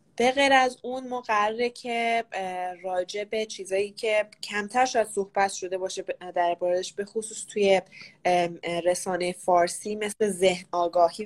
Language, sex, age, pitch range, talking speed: English, female, 10-29, 180-215 Hz, 130 wpm